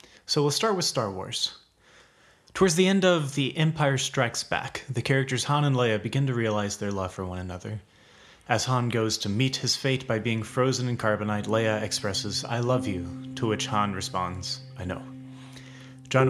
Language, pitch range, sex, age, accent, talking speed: English, 105-130 Hz, male, 30-49, American, 190 wpm